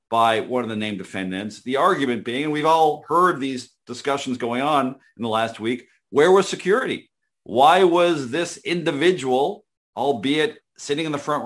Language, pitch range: English, 110-140 Hz